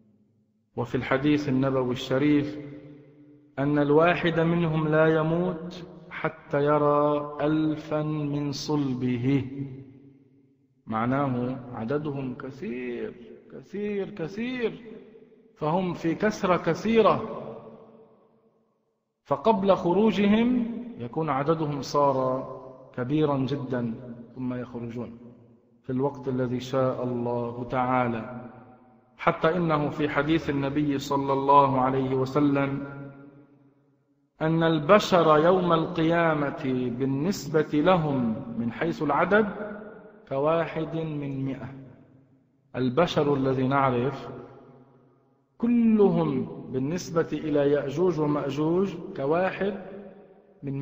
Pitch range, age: 130-170 Hz, 40-59